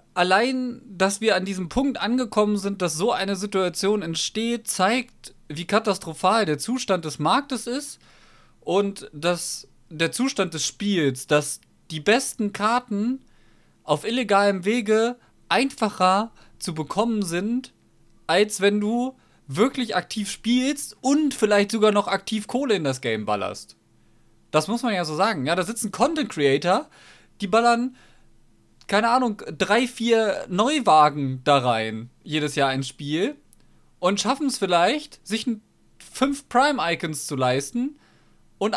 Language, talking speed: German, 135 wpm